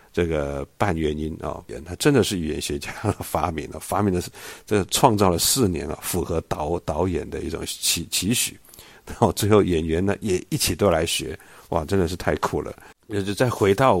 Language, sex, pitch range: Chinese, male, 80-110 Hz